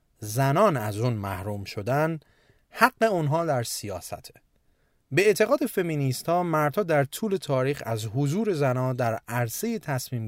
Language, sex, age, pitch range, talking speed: Persian, male, 30-49, 120-165 Hz, 130 wpm